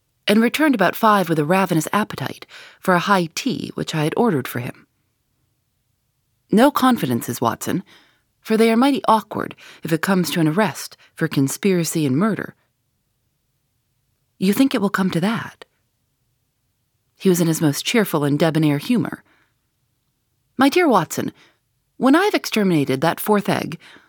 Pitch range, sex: 130-210 Hz, female